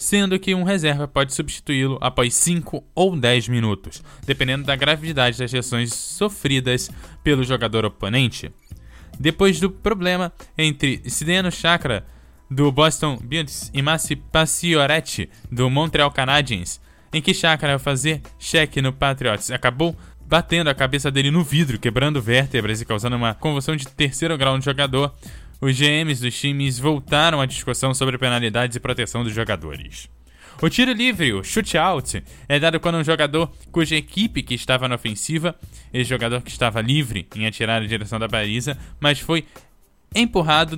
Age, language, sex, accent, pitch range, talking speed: 10-29, Portuguese, male, Brazilian, 120-160 Hz, 155 wpm